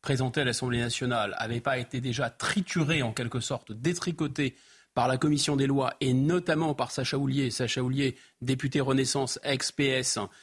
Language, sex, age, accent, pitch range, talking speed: French, male, 30-49, French, 130-165 Hz, 160 wpm